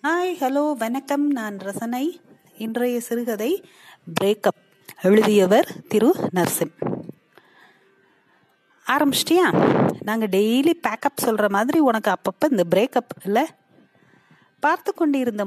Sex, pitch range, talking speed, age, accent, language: female, 195-260 Hz, 95 wpm, 30-49, native, Tamil